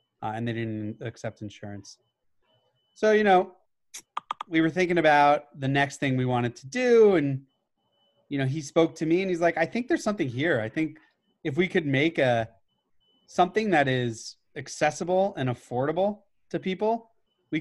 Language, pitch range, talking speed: English, 115-155 Hz, 175 wpm